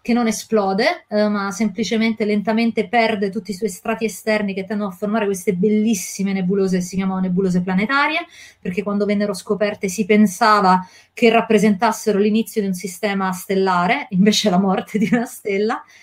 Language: Italian